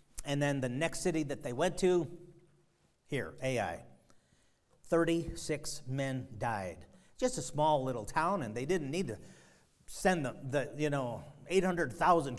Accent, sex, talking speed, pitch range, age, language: American, male, 145 wpm, 130-200 Hz, 40-59, English